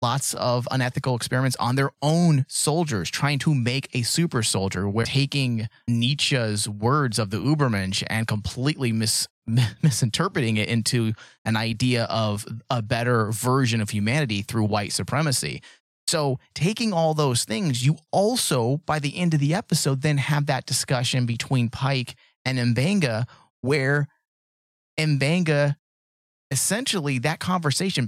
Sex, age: male, 30-49